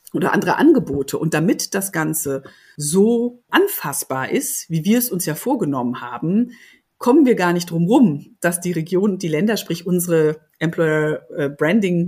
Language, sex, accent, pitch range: German, female, German, 165-200 Hz